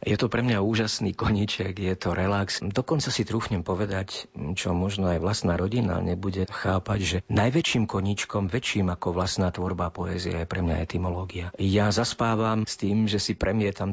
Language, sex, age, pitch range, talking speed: Slovak, male, 50-69, 95-110 Hz, 170 wpm